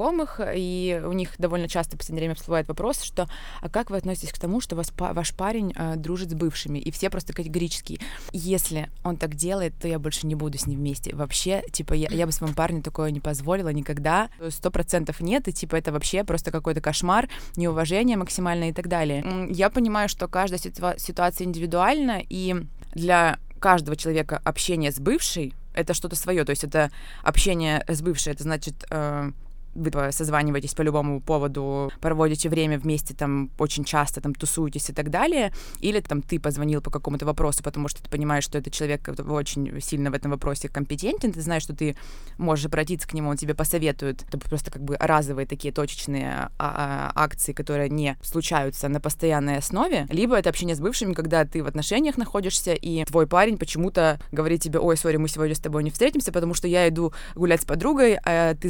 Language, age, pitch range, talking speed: Russian, 20-39, 150-180 Hz, 190 wpm